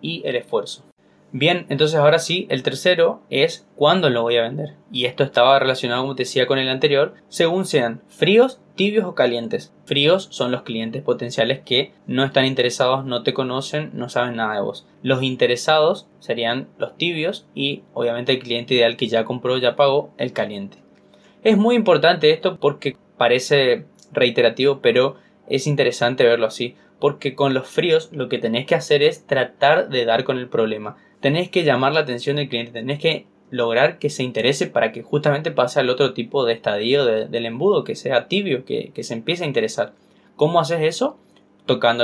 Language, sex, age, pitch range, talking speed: Spanish, male, 10-29, 125-165 Hz, 185 wpm